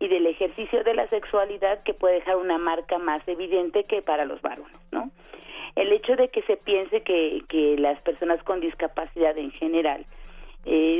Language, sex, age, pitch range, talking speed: Spanish, female, 40-59, 165-195 Hz, 180 wpm